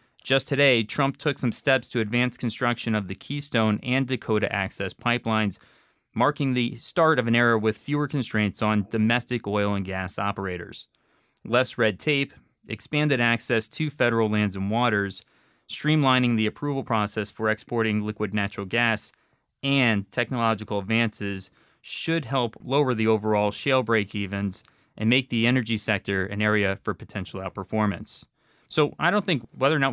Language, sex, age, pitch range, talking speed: English, male, 20-39, 105-130 Hz, 155 wpm